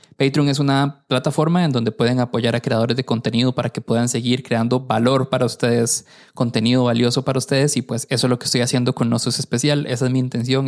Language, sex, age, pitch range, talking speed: Spanish, male, 20-39, 120-140 Hz, 220 wpm